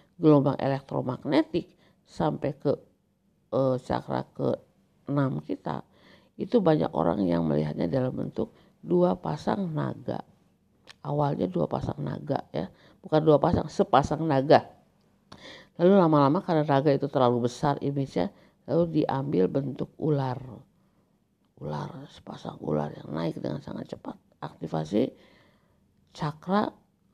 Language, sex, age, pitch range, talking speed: Indonesian, female, 50-69, 130-180 Hz, 110 wpm